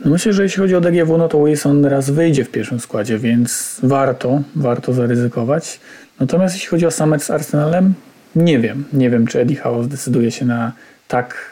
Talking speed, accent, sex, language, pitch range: 190 wpm, native, male, Polish, 120-150 Hz